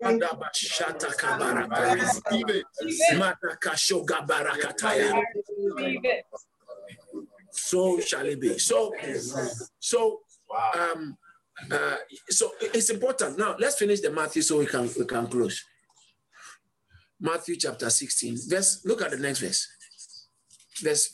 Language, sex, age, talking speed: English, male, 50-69, 90 wpm